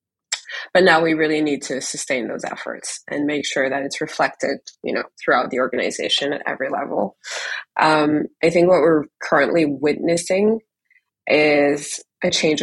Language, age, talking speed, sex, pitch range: English, 20-39, 155 wpm, female, 145-175 Hz